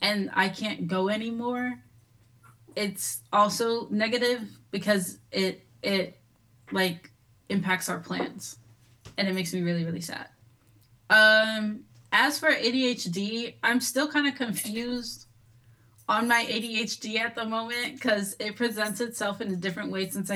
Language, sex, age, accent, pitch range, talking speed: English, female, 20-39, American, 175-225 Hz, 135 wpm